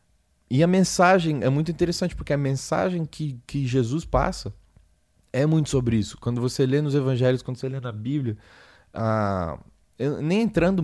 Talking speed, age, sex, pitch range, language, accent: 165 wpm, 20-39, male, 100-130 Hz, Portuguese, Brazilian